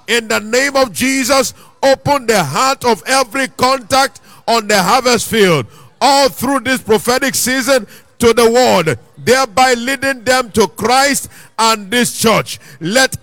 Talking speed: 145 wpm